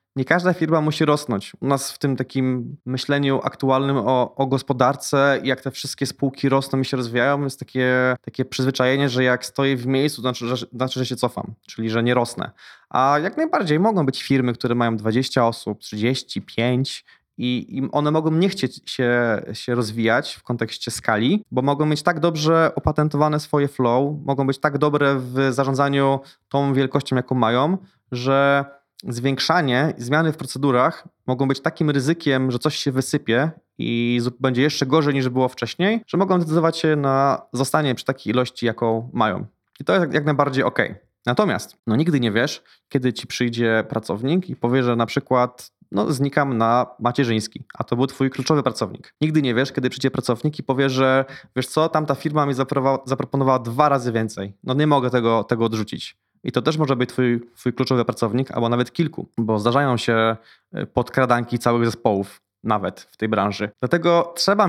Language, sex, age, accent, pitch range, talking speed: Polish, male, 20-39, native, 125-145 Hz, 180 wpm